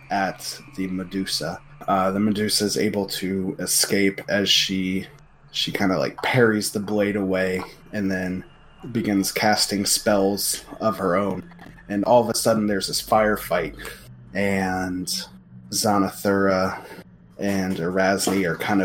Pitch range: 95-110 Hz